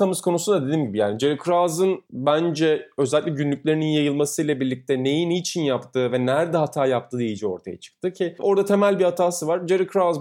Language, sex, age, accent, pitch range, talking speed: Turkish, male, 30-49, native, 130-175 Hz, 175 wpm